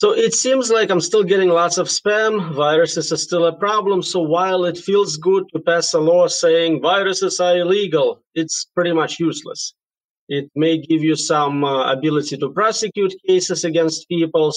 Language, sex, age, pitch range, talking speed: English, male, 30-49, 140-180 Hz, 180 wpm